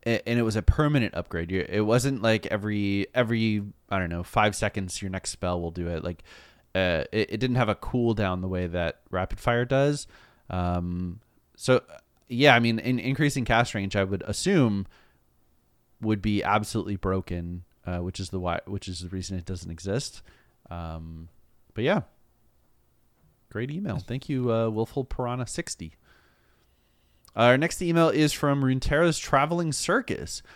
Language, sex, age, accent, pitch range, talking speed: English, male, 30-49, American, 100-130 Hz, 160 wpm